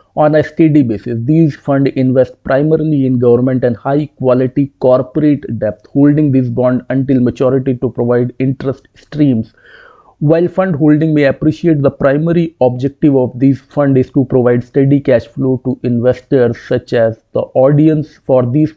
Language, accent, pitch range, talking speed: English, Indian, 125-145 Hz, 155 wpm